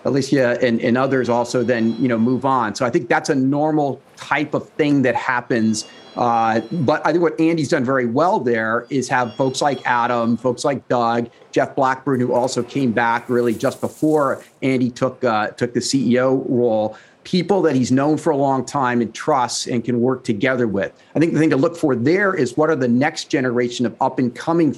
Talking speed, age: 215 wpm, 40-59